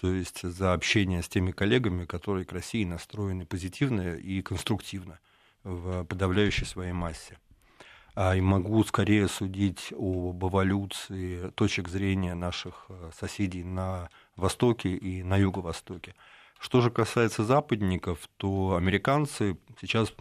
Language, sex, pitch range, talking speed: Russian, male, 90-105 Hz, 120 wpm